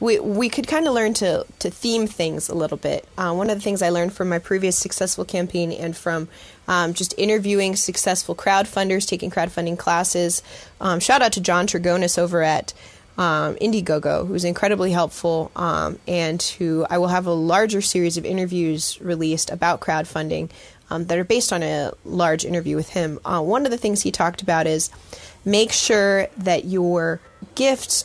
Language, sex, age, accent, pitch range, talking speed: English, female, 20-39, American, 170-205 Hz, 185 wpm